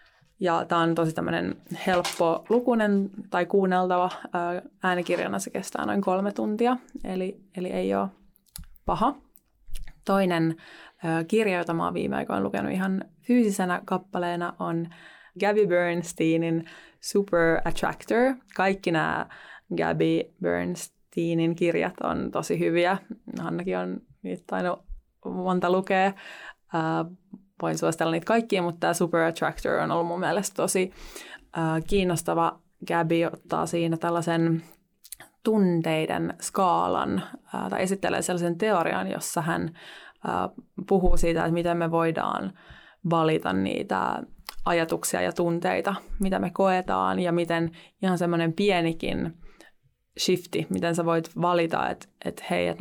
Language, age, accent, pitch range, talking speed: Finnish, 20-39, native, 165-190 Hz, 120 wpm